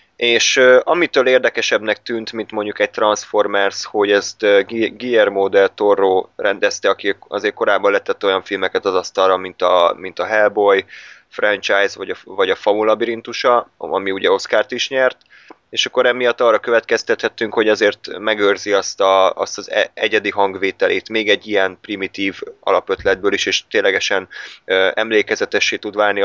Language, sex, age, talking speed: Hungarian, male, 20-39, 150 wpm